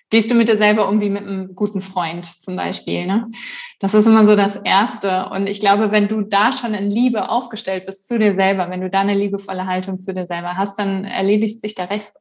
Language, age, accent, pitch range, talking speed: German, 20-39, German, 190-220 Hz, 240 wpm